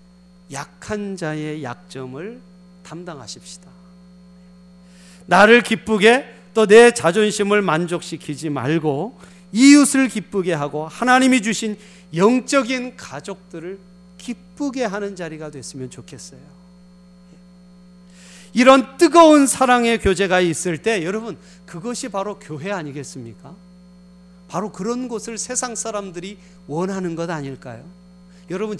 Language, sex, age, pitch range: Korean, male, 40-59, 175-215 Hz